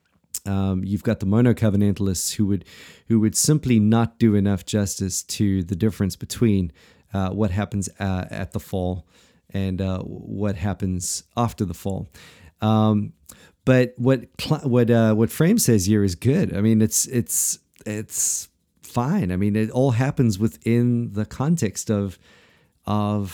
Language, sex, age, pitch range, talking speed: English, male, 40-59, 95-120 Hz, 155 wpm